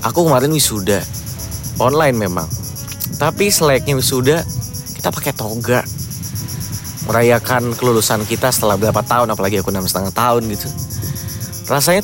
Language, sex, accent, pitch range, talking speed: Indonesian, male, native, 110-135 Hz, 115 wpm